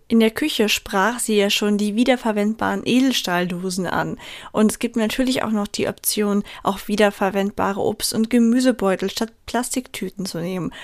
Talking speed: 155 wpm